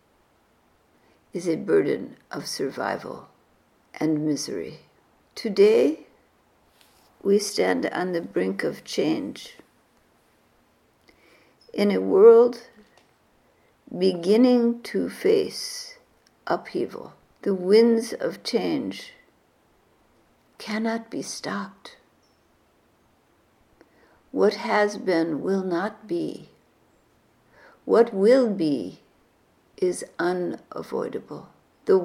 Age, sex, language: 60-79, female, English